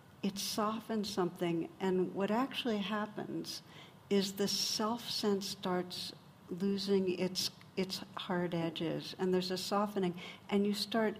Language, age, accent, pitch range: English, 60-79, American, 170-195 Hz